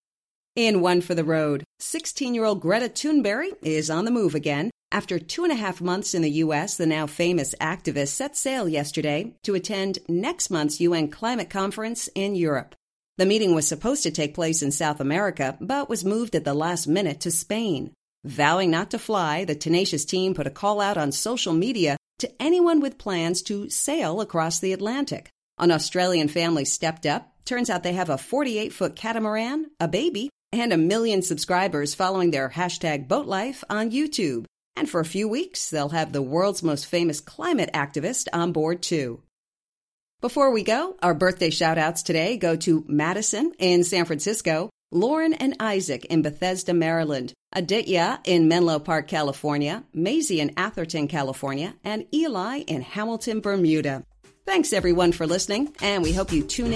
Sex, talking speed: female, 170 wpm